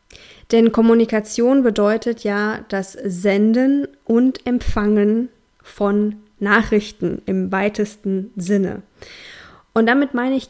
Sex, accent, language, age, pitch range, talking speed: female, German, German, 20-39, 195-225 Hz, 95 wpm